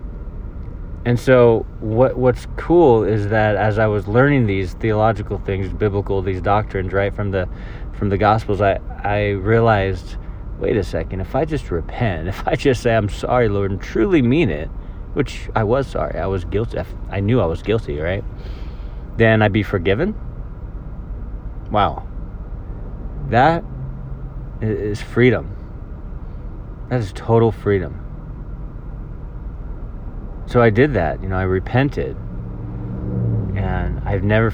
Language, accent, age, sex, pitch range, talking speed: English, American, 30-49, male, 95-120 Hz, 140 wpm